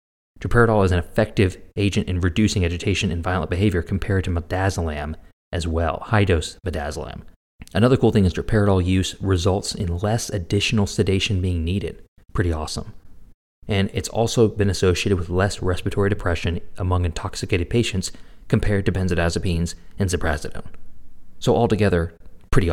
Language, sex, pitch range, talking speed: English, male, 85-100 Hz, 140 wpm